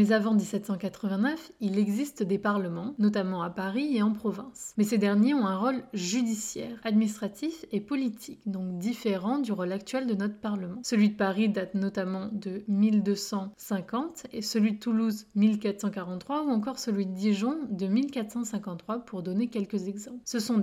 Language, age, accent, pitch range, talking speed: French, 20-39, French, 200-235 Hz, 165 wpm